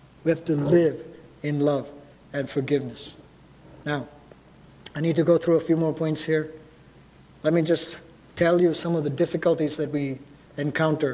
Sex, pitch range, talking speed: male, 160-205 Hz, 165 wpm